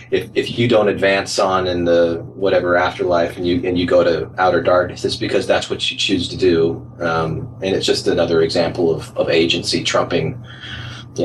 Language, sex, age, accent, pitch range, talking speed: English, male, 30-49, American, 90-120 Hz, 195 wpm